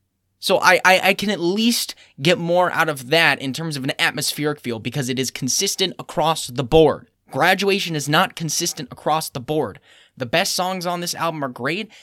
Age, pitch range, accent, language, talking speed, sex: 10-29, 115-175 Hz, American, English, 200 wpm, male